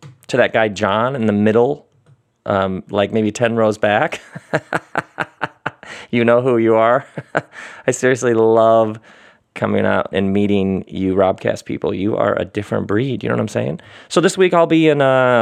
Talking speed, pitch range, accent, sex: 175 wpm, 115-140 Hz, American, male